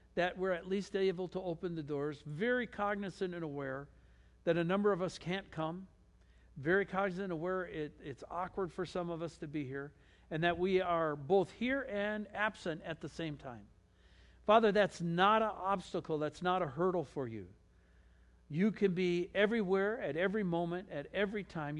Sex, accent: male, American